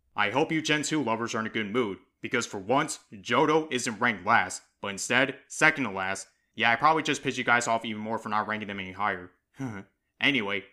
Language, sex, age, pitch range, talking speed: English, male, 30-49, 105-135 Hz, 225 wpm